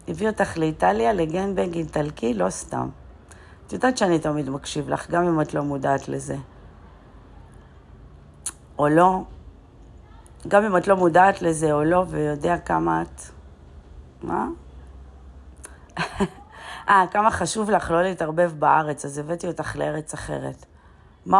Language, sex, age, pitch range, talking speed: Hebrew, female, 40-59, 115-180 Hz, 130 wpm